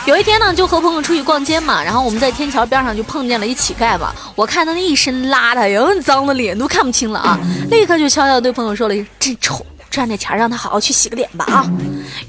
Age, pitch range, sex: 20-39, 230-330 Hz, female